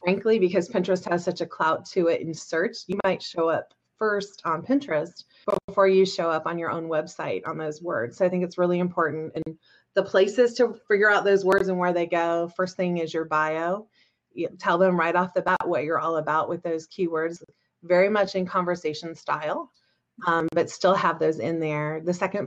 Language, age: English, 30-49